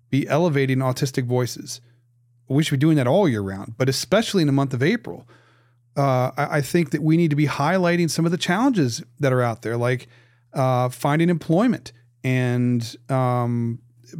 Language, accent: English, American